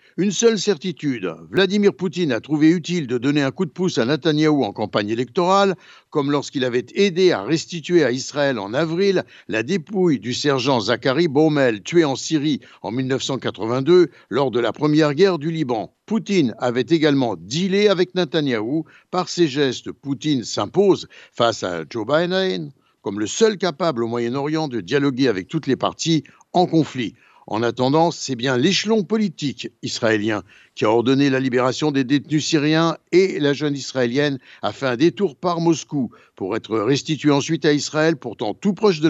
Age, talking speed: 60-79, 170 wpm